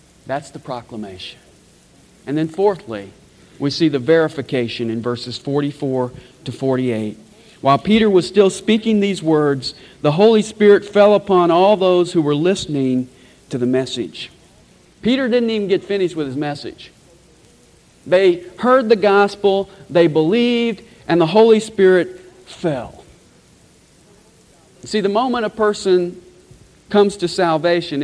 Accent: American